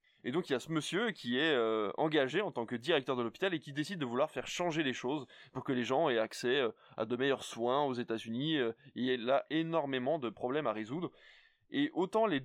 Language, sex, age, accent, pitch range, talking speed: French, male, 20-39, French, 120-160 Hz, 250 wpm